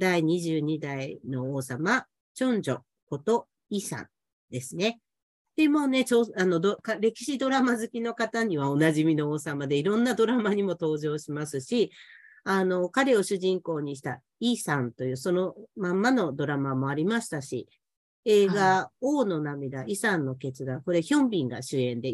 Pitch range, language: 145-225 Hz, Japanese